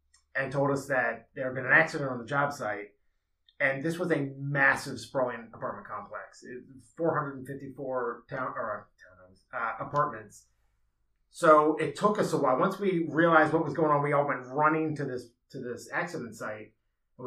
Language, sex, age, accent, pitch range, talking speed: English, male, 30-49, American, 125-155 Hz, 175 wpm